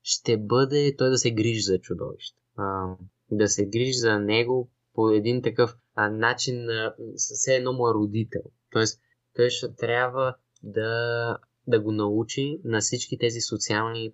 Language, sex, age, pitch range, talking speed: Bulgarian, male, 20-39, 100-120 Hz, 155 wpm